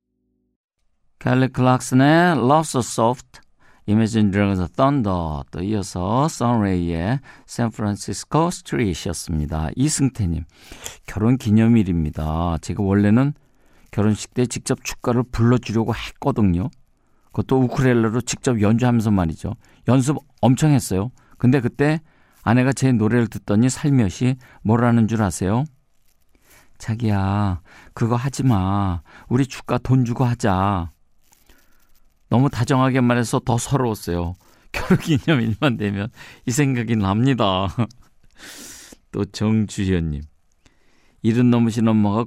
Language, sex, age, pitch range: Korean, male, 50-69, 100-130 Hz